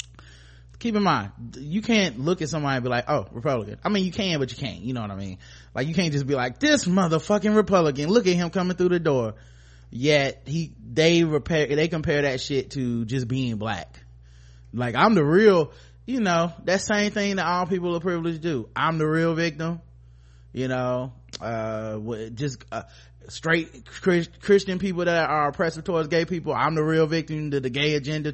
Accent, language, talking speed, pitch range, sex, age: American, English, 200 wpm, 125-165 Hz, male, 30-49